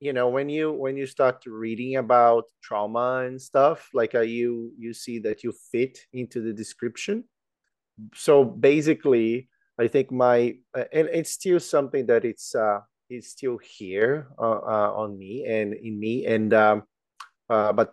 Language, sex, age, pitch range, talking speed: English, male, 30-49, 110-135 Hz, 170 wpm